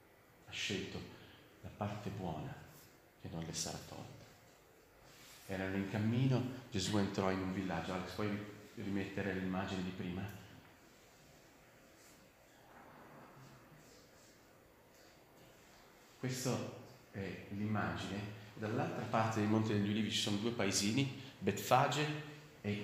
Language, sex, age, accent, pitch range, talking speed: Italian, male, 40-59, native, 95-115 Hz, 100 wpm